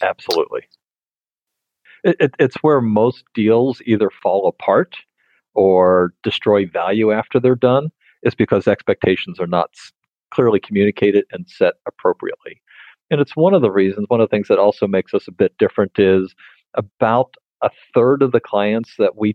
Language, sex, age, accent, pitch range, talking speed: English, male, 50-69, American, 100-140 Hz, 155 wpm